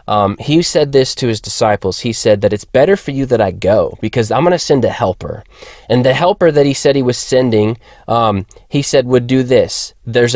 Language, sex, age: English, male, 20-39